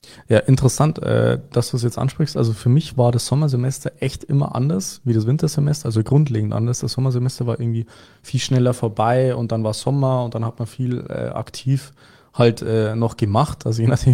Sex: male